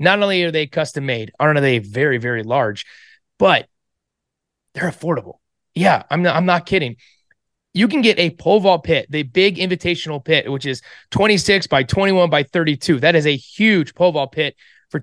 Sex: male